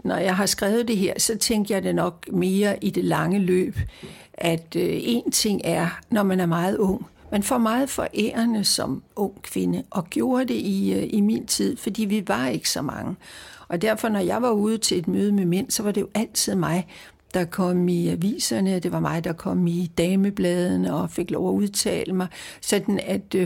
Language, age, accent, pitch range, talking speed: English, 60-79, Danish, 175-215 Hz, 205 wpm